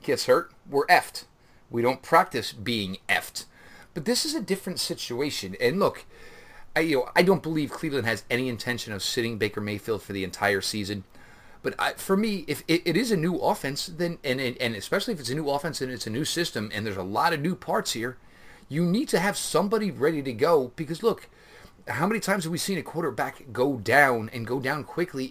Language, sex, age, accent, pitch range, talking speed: English, male, 30-49, American, 125-195 Hz, 220 wpm